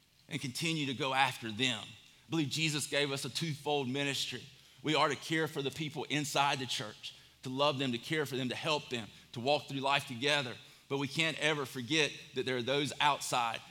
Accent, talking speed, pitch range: American, 215 wpm, 140-170 Hz